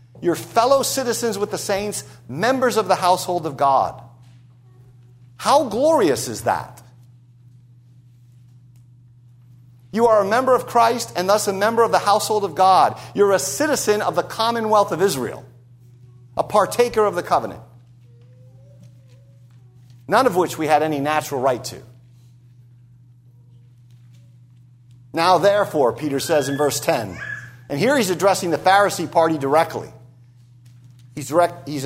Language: English